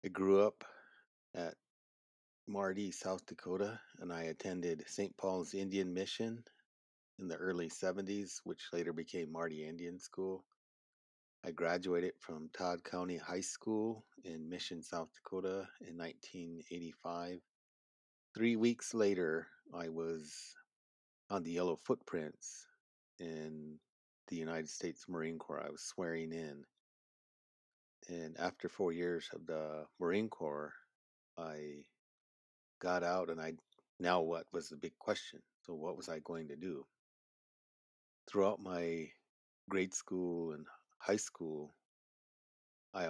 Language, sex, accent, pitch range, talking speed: English, male, American, 80-95 Hz, 125 wpm